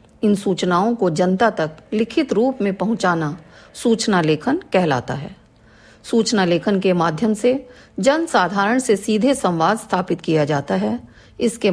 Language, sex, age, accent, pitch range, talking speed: Hindi, female, 40-59, native, 175-250 Hz, 145 wpm